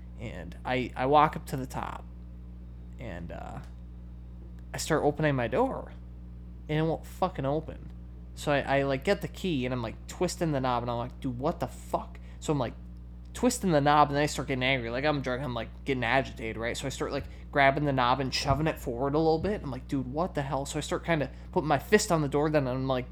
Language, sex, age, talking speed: English, male, 20-39, 245 wpm